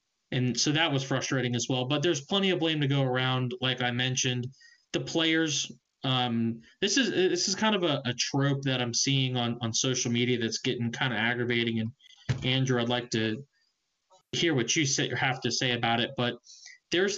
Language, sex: English, male